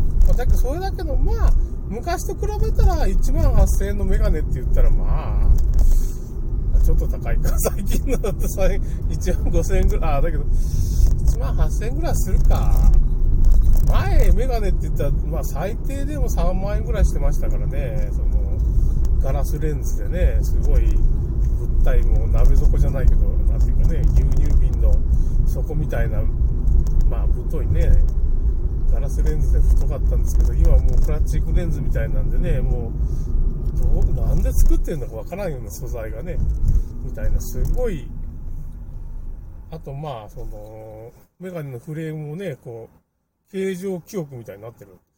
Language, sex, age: Japanese, male, 20-39